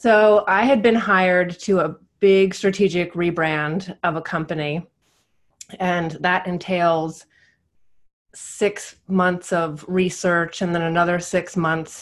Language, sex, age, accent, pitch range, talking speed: English, female, 30-49, American, 160-190 Hz, 125 wpm